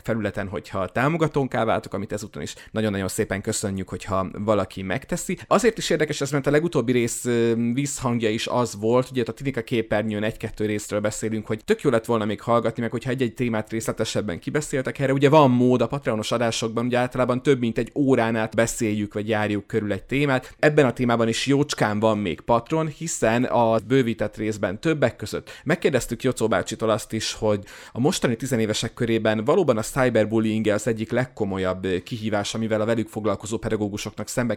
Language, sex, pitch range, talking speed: Hungarian, male, 105-125 Hz, 175 wpm